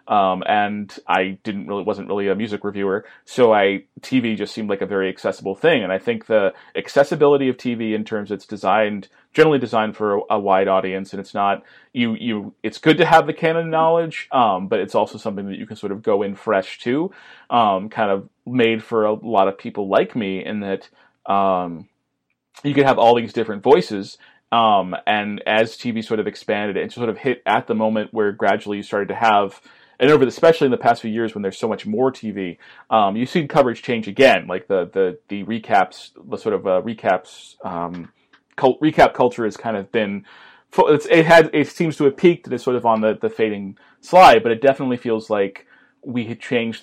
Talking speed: 215 wpm